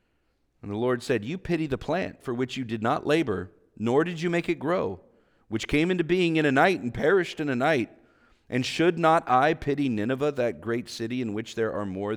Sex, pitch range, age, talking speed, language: male, 105-170 Hz, 40-59, 225 wpm, English